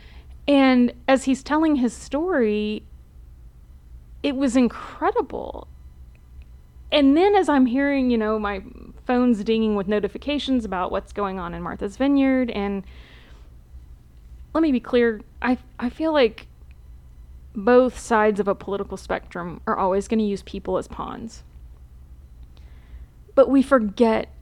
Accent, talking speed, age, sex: American, 135 wpm, 20-39, female